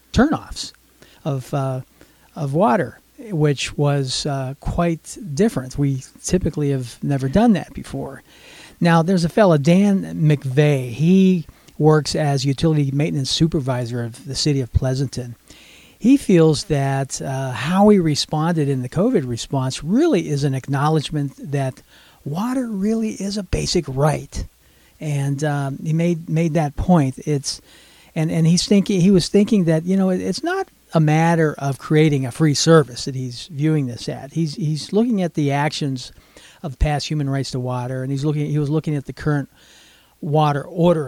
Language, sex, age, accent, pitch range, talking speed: English, male, 40-59, American, 140-175 Hz, 160 wpm